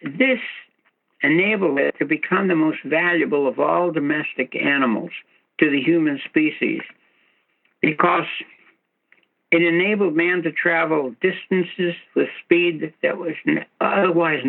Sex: male